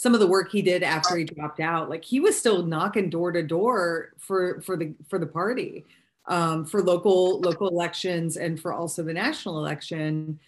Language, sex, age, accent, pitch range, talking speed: English, female, 30-49, American, 165-200 Hz, 200 wpm